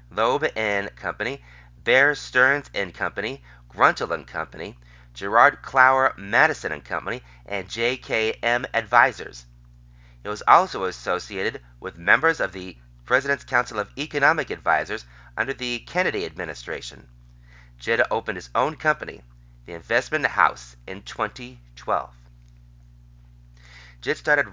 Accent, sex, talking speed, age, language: American, male, 115 wpm, 30-49, English